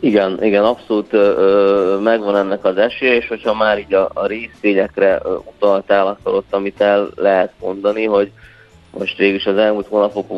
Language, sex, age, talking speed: Hungarian, male, 20-39, 160 wpm